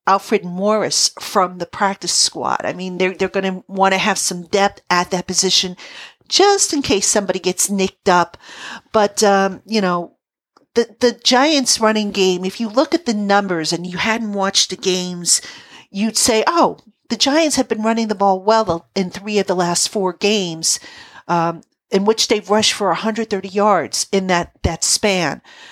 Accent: American